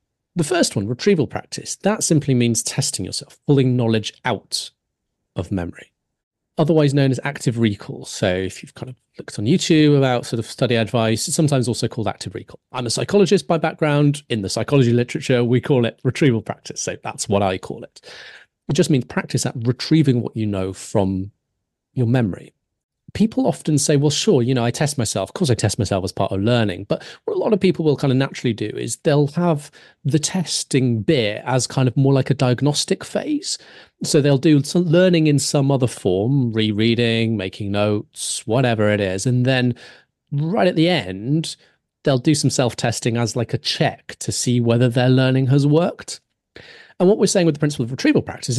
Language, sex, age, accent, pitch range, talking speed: English, male, 40-59, British, 110-150 Hz, 200 wpm